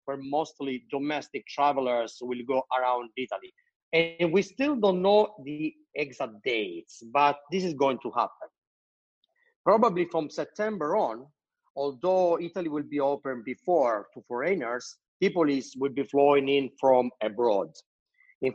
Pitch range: 125-185 Hz